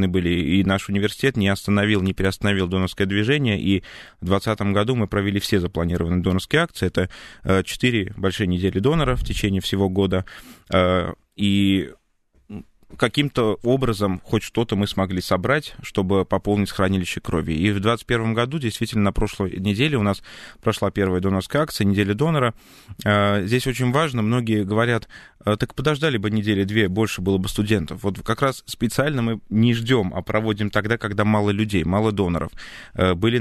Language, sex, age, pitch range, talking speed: Russian, male, 20-39, 95-115 Hz, 155 wpm